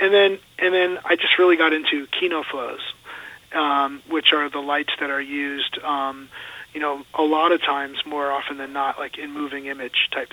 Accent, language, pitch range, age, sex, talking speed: American, English, 140-160 Hz, 40-59, male, 195 wpm